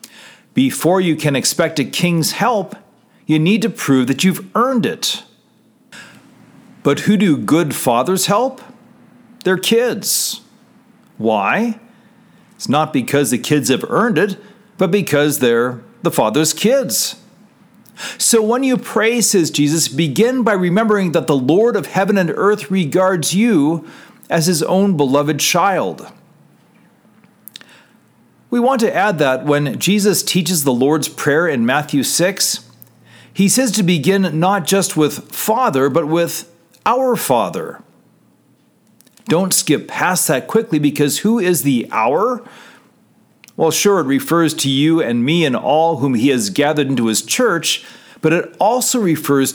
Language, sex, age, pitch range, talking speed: English, male, 40-59, 155-225 Hz, 145 wpm